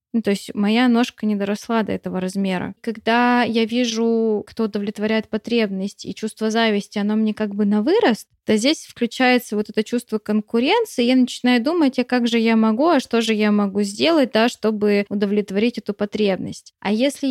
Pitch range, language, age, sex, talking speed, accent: 205-240 Hz, Russian, 20-39, female, 185 wpm, native